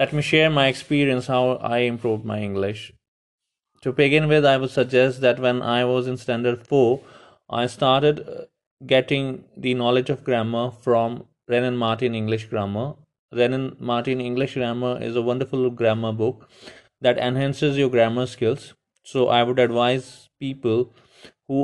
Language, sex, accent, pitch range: English, male, Indian, 125-140 Hz